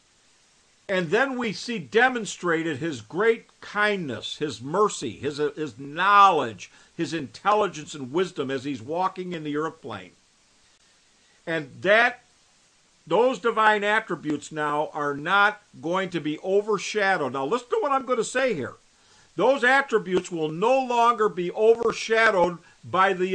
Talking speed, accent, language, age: 140 wpm, American, English, 50-69